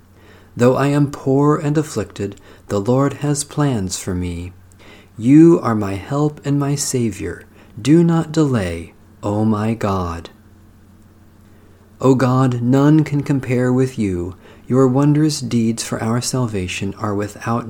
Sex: male